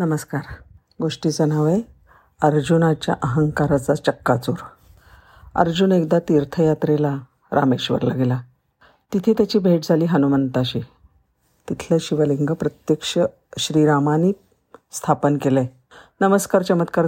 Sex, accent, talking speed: female, native, 90 wpm